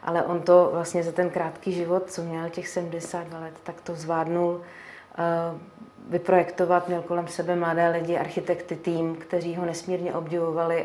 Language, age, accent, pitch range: Czech, 30-49, native, 170-180 Hz